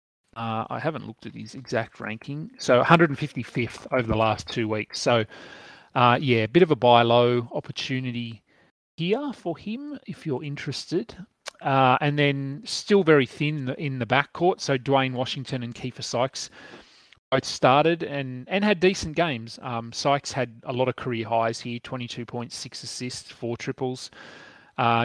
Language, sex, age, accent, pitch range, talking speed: English, male, 30-49, Australian, 115-145 Hz, 165 wpm